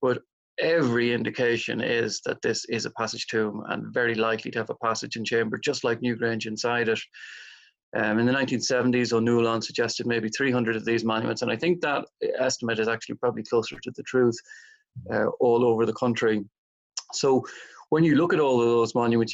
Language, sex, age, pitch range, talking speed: English, male, 30-49, 115-125 Hz, 190 wpm